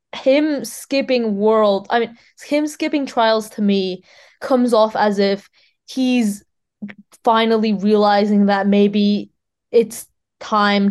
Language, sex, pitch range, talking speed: English, female, 205-250 Hz, 115 wpm